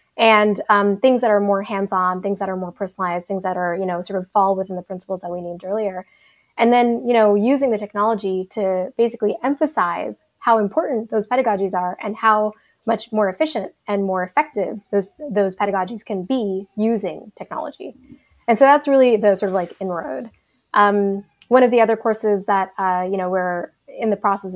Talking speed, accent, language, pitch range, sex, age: 195 wpm, American, English, 190-230 Hz, female, 20-39